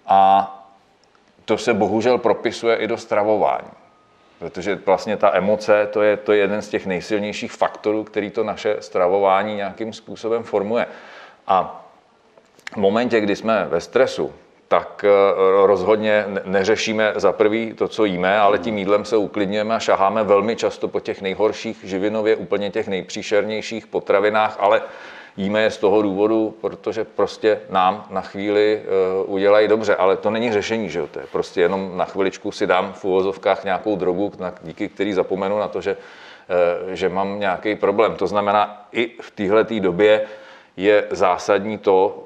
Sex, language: male, Czech